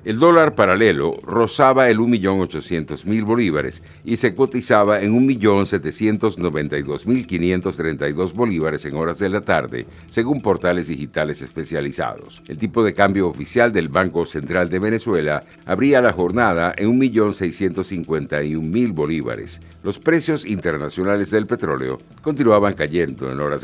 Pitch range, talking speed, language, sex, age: 80-110 Hz, 120 wpm, Spanish, male, 60-79